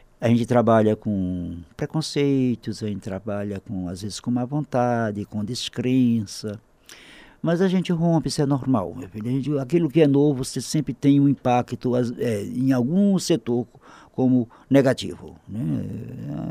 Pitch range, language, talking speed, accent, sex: 105-130 Hz, Portuguese, 150 wpm, Brazilian, male